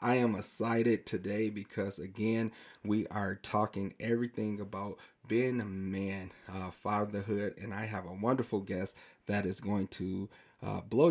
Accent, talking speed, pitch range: American, 145 wpm, 100-115 Hz